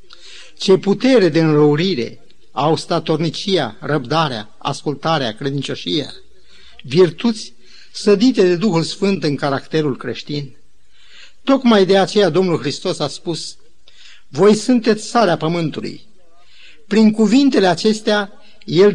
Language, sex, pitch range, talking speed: Romanian, male, 150-210 Hz, 105 wpm